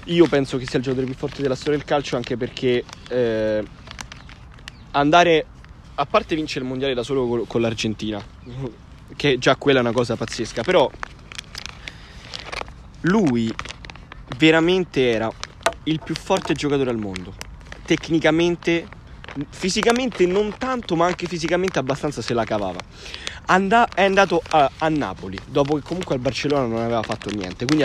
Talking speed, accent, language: 145 wpm, native, Italian